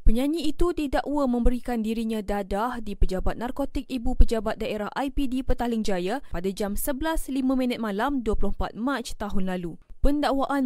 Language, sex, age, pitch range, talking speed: Malay, female, 20-39, 215-270 Hz, 135 wpm